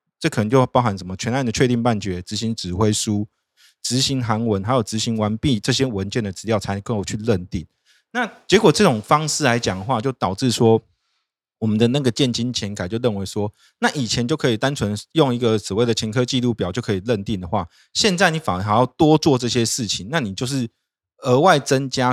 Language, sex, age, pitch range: Chinese, male, 20-39, 105-135 Hz